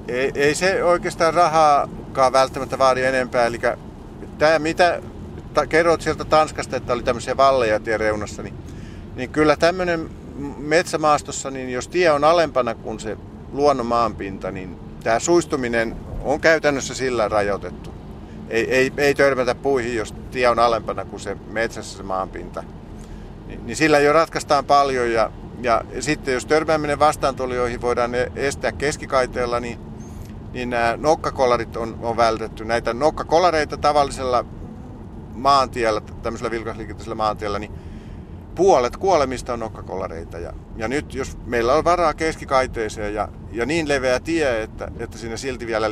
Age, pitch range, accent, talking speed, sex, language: 50-69, 105-140 Hz, native, 140 wpm, male, Finnish